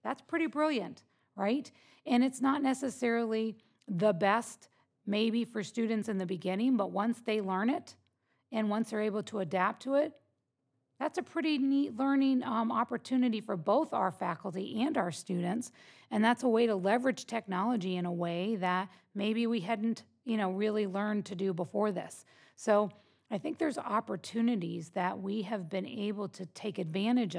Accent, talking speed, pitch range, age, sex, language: American, 170 wpm, 195-245 Hz, 40-59, female, English